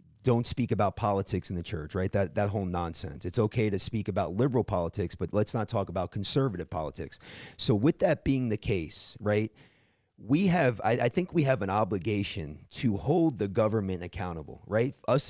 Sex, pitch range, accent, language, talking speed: male, 100-125 Hz, American, English, 190 wpm